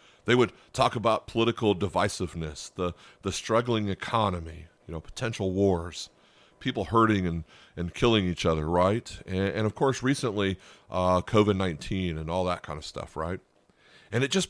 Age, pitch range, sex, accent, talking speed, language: 40-59, 90-120 Hz, male, American, 160 wpm, English